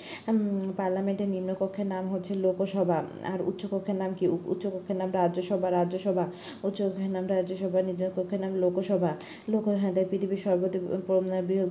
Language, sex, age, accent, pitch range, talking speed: Bengali, female, 20-39, native, 185-190 Hz, 115 wpm